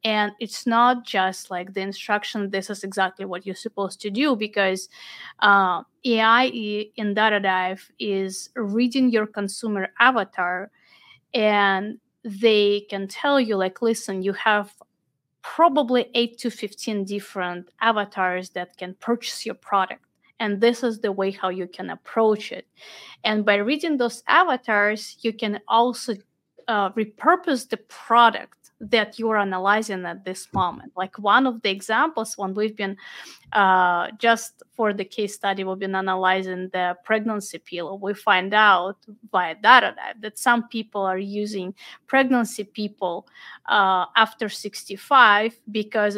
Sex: female